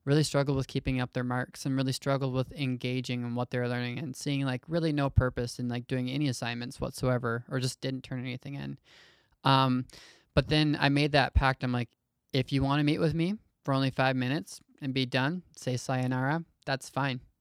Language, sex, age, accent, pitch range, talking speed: English, male, 20-39, American, 125-140 Hz, 210 wpm